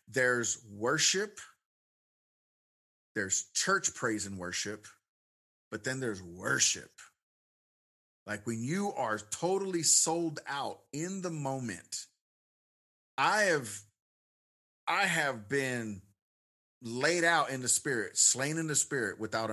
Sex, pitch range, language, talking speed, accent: male, 110-160 Hz, English, 110 wpm, American